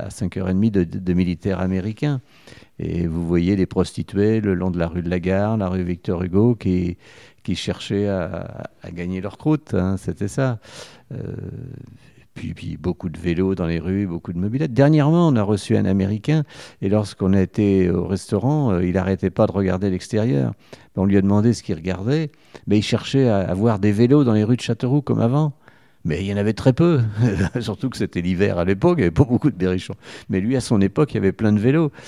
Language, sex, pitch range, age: French, male, 95-125 Hz, 50-69